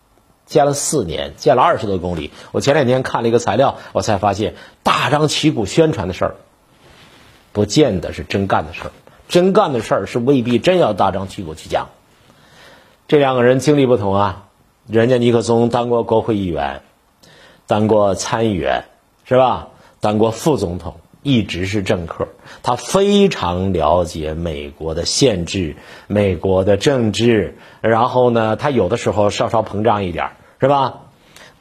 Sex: male